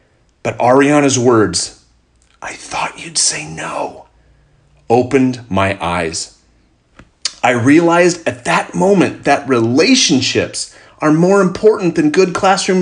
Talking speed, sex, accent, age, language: 110 wpm, male, American, 30-49, English